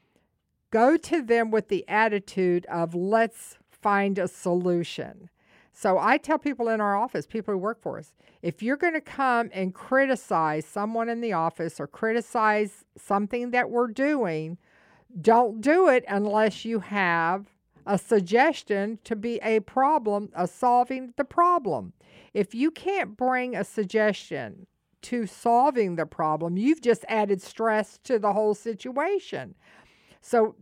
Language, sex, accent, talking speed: English, female, American, 145 wpm